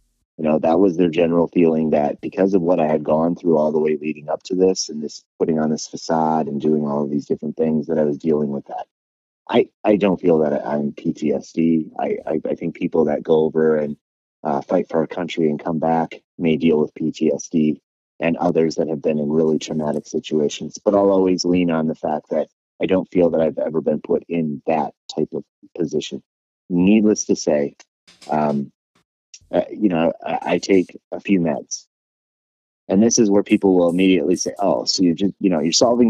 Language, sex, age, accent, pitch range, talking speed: English, male, 30-49, American, 80-95 Hz, 215 wpm